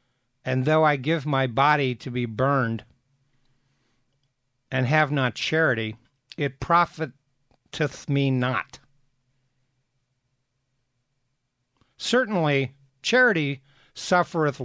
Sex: male